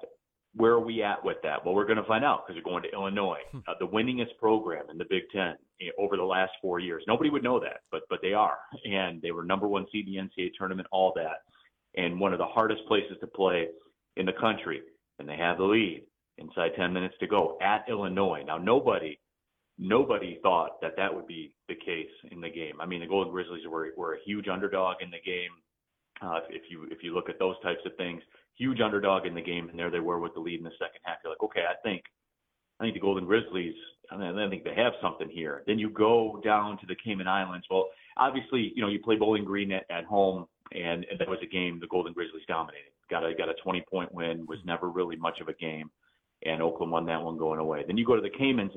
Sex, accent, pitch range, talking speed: male, American, 85-110 Hz, 245 wpm